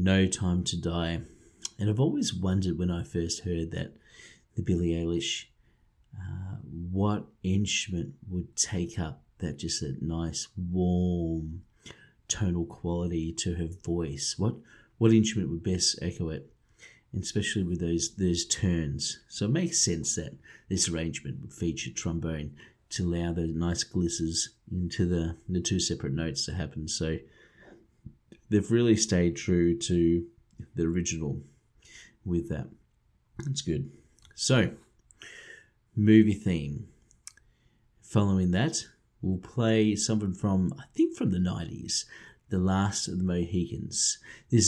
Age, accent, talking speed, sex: 30-49, Australian, 135 wpm, male